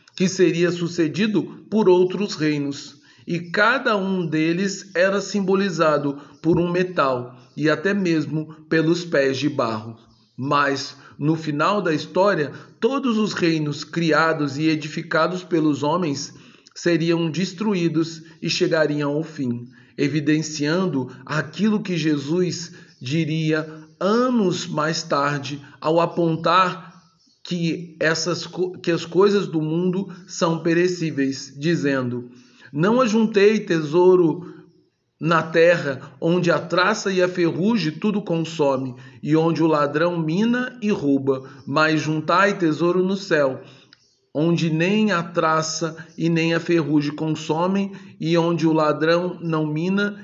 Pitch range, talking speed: 150-180 Hz, 120 wpm